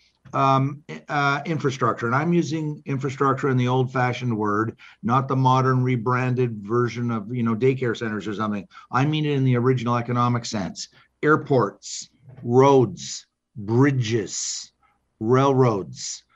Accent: American